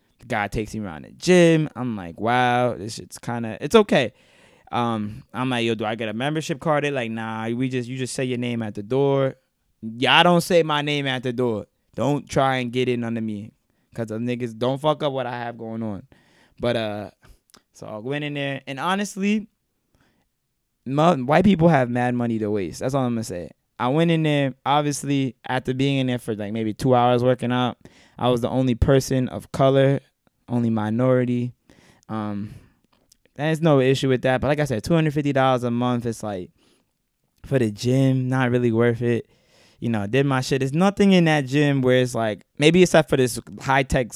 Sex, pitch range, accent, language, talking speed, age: male, 115-140 Hz, American, English, 205 wpm, 20-39